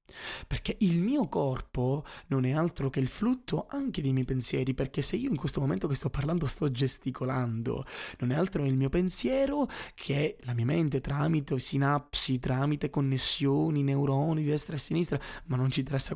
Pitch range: 130-170 Hz